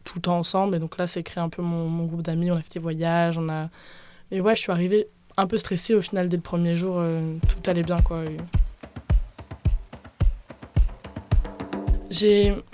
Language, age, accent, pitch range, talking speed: French, 20-39, French, 175-200 Hz, 195 wpm